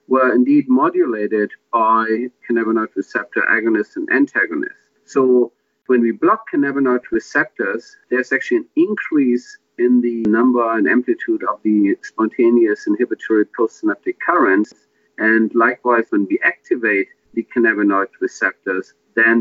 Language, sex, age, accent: English, male, 50-69, German